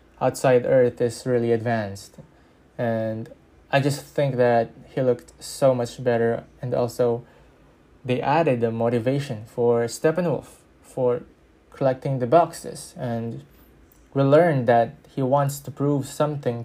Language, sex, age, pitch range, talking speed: English, male, 20-39, 115-140 Hz, 130 wpm